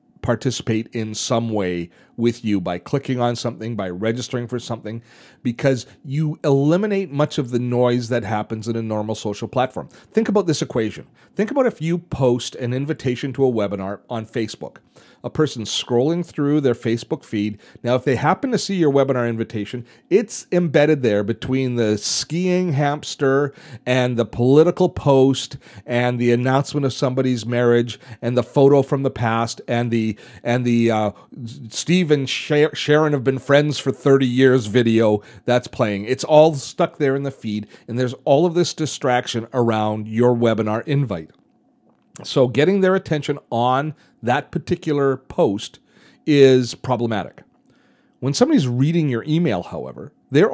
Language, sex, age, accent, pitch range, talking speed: English, male, 40-59, American, 115-150 Hz, 160 wpm